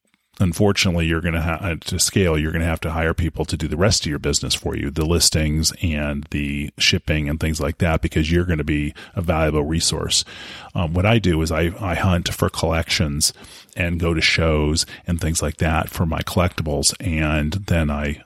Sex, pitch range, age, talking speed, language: male, 80-95 Hz, 30-49, 210 wpm, English